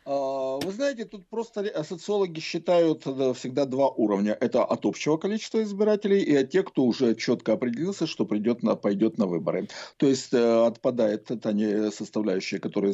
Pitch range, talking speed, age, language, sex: 105-165 Hz, 160 wpm, 50-69, Russian, male